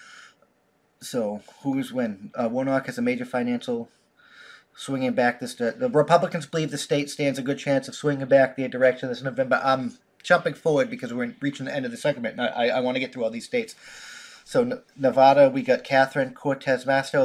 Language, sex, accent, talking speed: English, male, American, 190 wpm